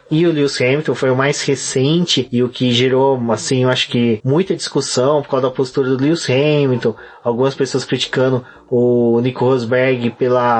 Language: Portuguese